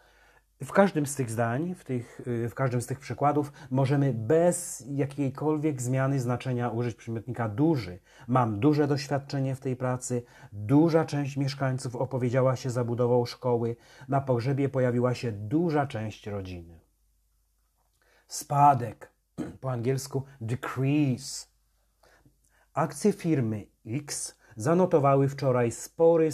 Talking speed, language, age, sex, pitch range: 115 wpm, Polish, 40-59, male, 115-140 Hz